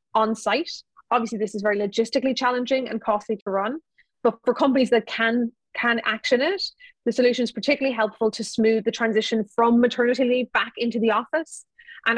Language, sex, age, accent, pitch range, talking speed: English, female, 20-39, Irish, 210-245 Hz, 180 wpm